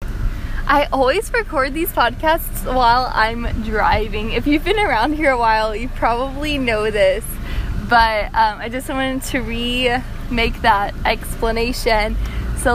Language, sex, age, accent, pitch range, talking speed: English, female, 10-29, American, 225-285 Hz, 135 wpm